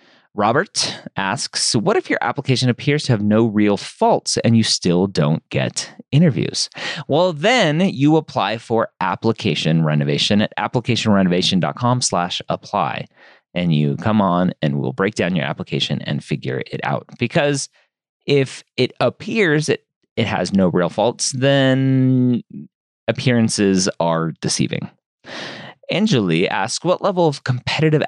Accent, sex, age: American, male, 30-49